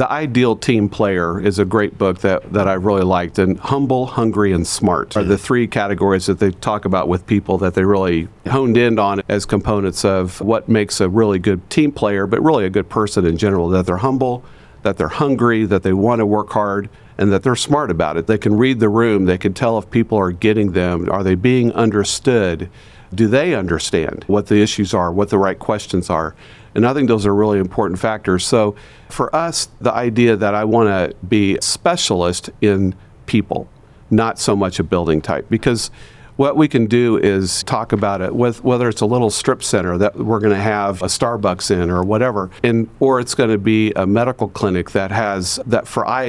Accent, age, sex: American, 50-69, male